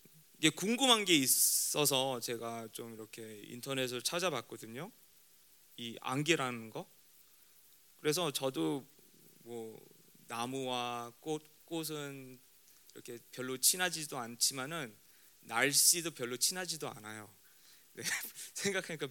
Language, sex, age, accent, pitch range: Korean, male, 20-39, native, 125-185 Hz